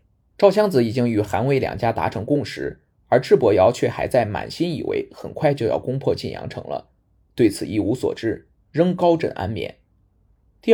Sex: male